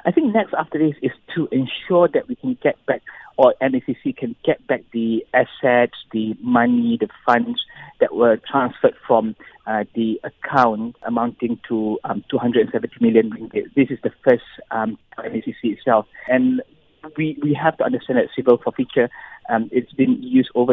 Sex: male